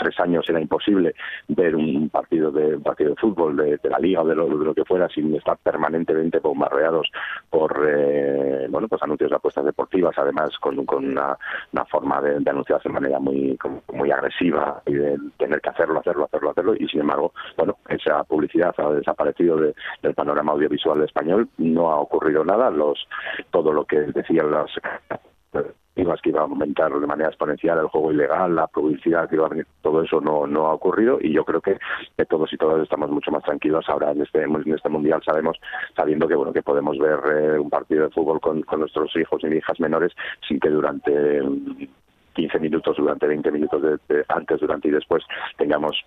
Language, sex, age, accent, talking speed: Spanish, male, 40-59, Spanish, 200 wpm